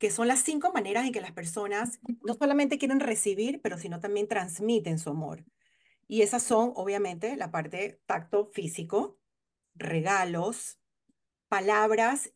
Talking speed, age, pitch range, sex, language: 140 wpm, 40-59, 175-240 Hz, female, Spanish